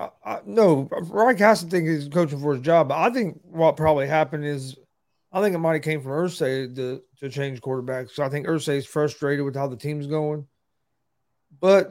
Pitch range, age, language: 140-165 Hz, 40-59, English